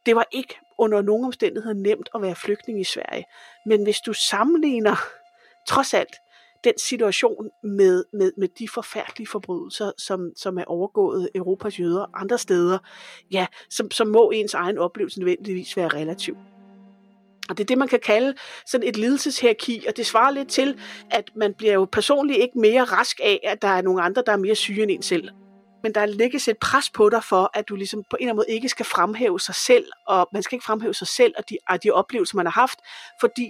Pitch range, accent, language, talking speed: 195-250 Hz, native, Danish, 205 wpm